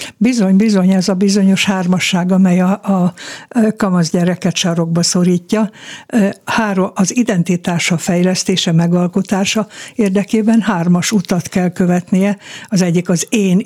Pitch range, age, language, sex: 180-210 Hz, 60-79, Hungarian, female